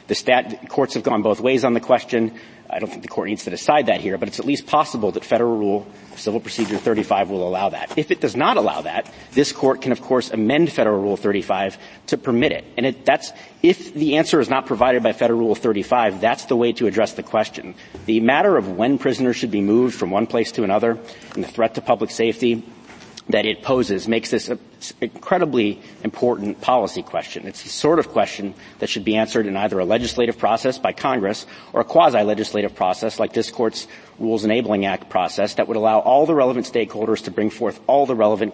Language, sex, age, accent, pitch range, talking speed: English, male, 40-59, American, 105-120 Hz, 220 wpm